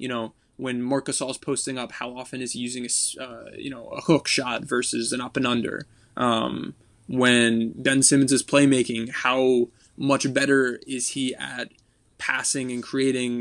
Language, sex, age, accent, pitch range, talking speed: English, male, 20-39, American, 120-135 Hz, 170 wpm